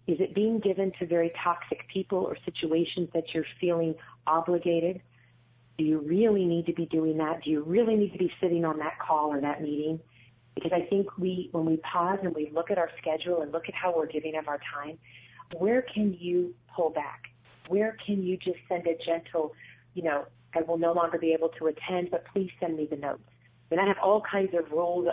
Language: English